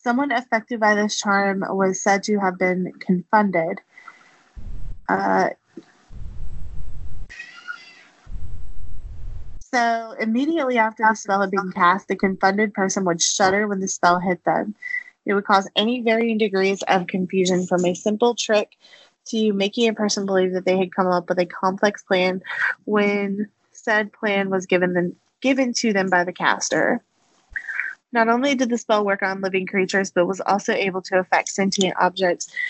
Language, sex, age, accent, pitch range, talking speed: English, female, 20-39, American, 185-220 Hz, 155 wpm